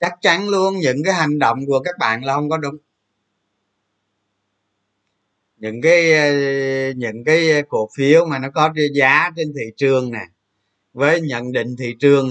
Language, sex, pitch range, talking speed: Vietnamese, male, 105-155 Hz, 160 wpm